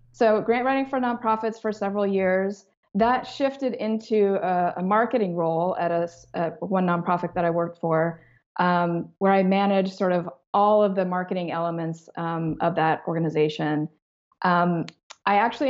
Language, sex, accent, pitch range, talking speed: English, female, American, 170-215 Hz, 160 wpm